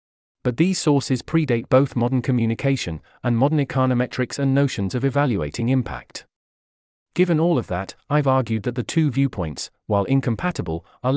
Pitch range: 105-140 Hz